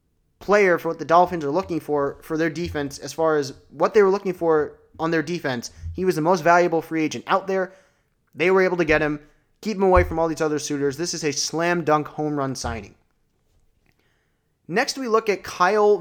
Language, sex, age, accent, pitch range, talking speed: English, male, 20-39, American, 145-180 Hz, 215 wpm